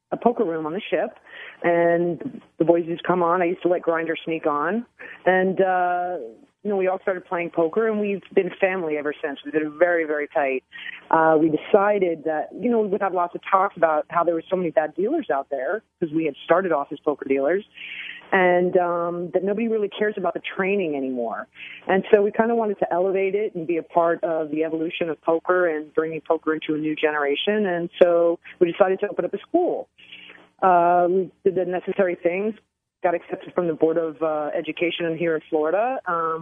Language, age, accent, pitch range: English, 30-49, American, 155-190 Hz